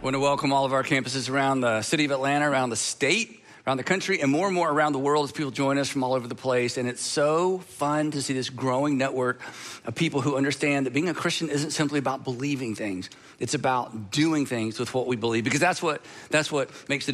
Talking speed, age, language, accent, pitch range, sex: 250 wpm, 50-69, English, American, 140-195 Hz, male